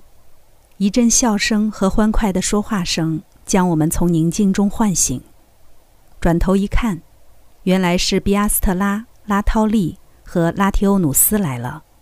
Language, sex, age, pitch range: Chinese, female, 50-69, 140-200 Hz